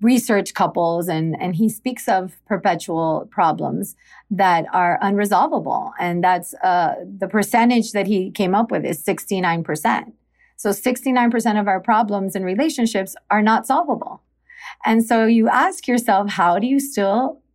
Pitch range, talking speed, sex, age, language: 185-230 Hz, 145 wpm, female, 30-49, English